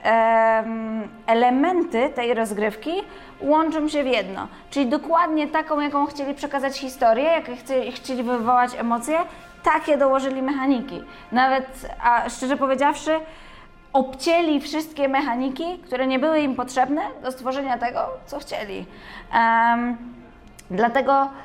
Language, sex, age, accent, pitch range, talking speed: Polish, female, 20-39, native, 235-290 Hz, 115 wpm